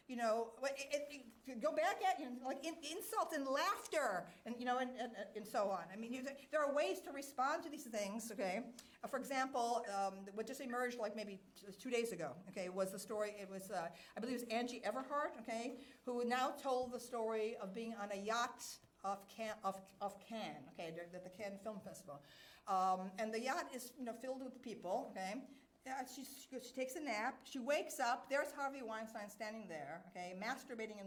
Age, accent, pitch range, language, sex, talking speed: 50-69, American, 195-275 Hz, English, female, 210 wpm